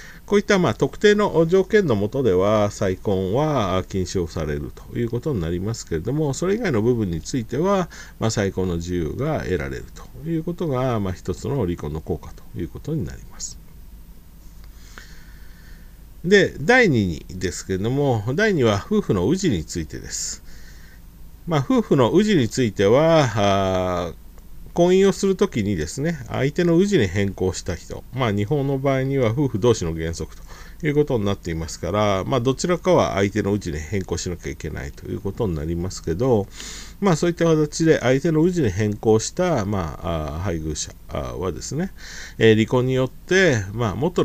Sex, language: male, Japanese